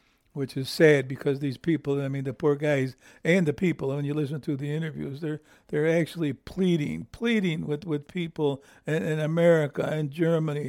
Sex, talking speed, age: male, 185 wpm, 60-79